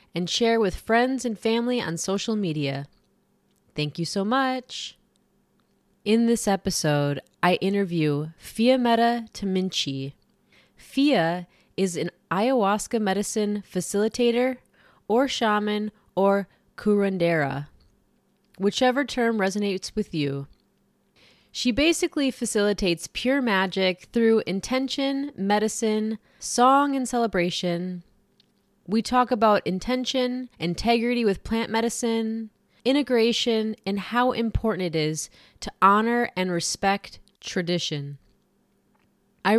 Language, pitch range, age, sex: English, 175-235 Hz, 20-39, female